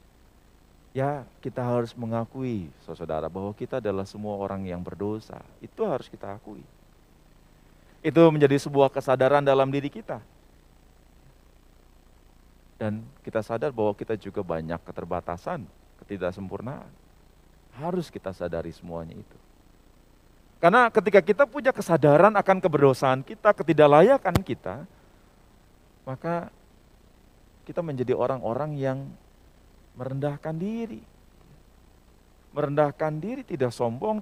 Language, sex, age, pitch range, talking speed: Indonesian, male, 40-59, 95-155 Hz, 100 wpm